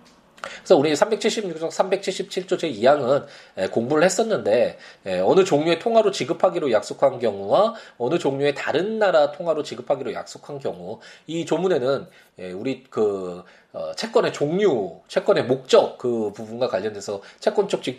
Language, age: Korean, 20-39